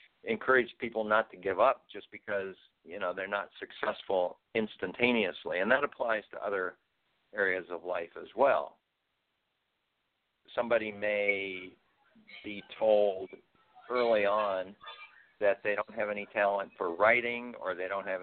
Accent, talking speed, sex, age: American, 140 wpm, male, 50-69